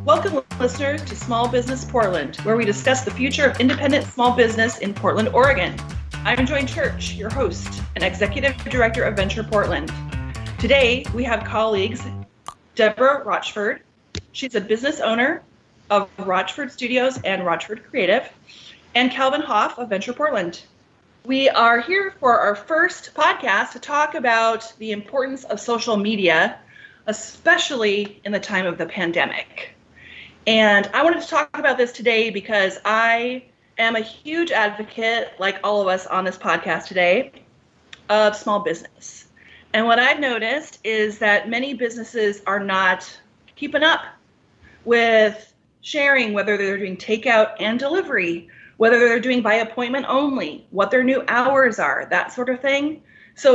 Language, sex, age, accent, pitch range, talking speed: English, female, 30-49, American, 200-265 Hz, 150 wpm